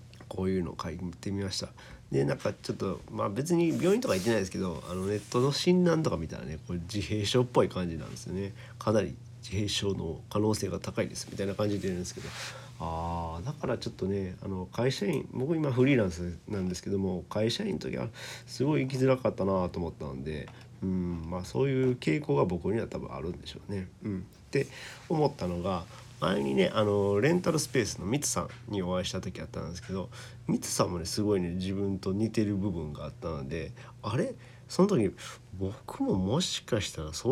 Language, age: Japanese, 40-59